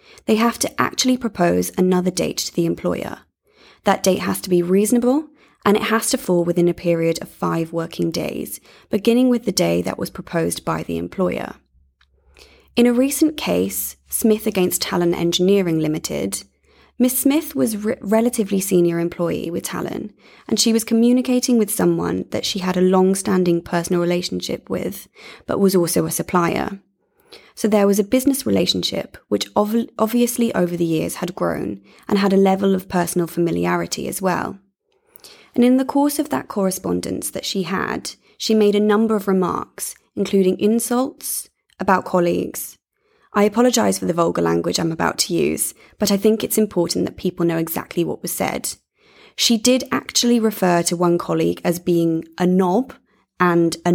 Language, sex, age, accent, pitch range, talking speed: English, female, 20-39, British, 170-235 Hz, 170 wpm